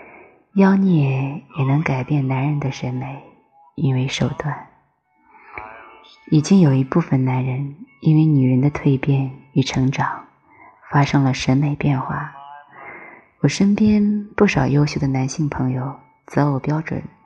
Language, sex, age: Chinese, female, 20-39